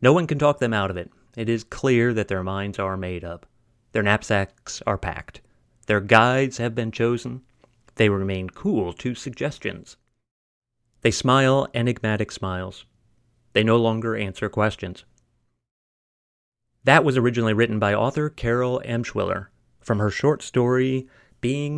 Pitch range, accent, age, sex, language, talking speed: 100-125 Hz, American, 30-49, male, English, 150 wpm